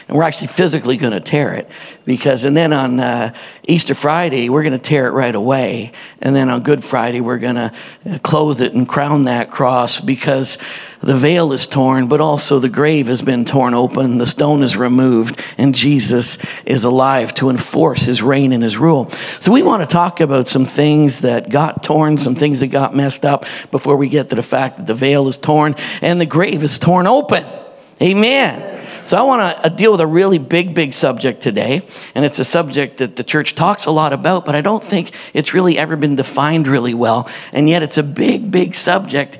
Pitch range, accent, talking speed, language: 130-165 Hz, American, 215 wpm, English